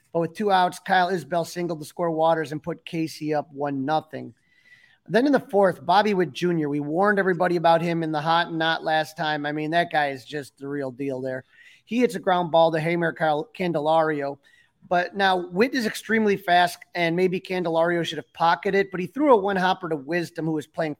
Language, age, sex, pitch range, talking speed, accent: English, 30-49, male, 155-190 Hz, 220 wpm, American